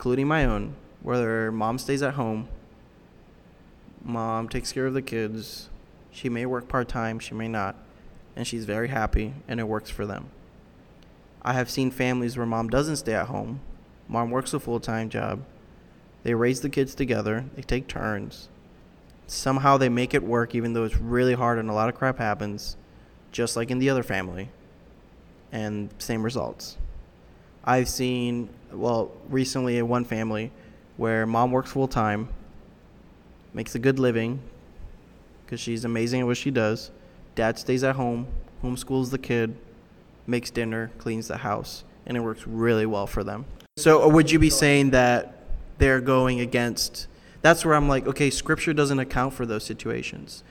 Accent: American